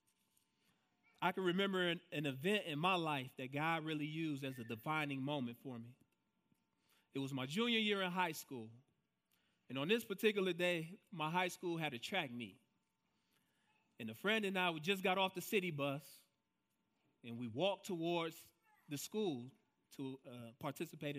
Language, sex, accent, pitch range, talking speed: English, male, American, 135-195 Hz, 170 wpm